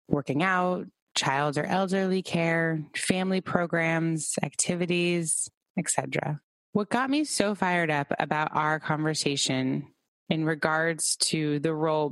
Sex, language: female, English